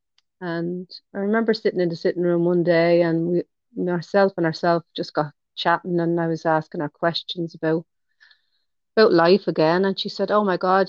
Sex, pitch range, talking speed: female, 160-180 Hz, 185 wpm